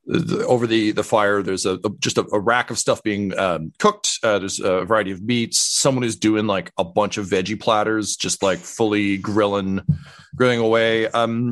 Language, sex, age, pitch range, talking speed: English, male, 30-49, 90-120 Hz, 200 wpm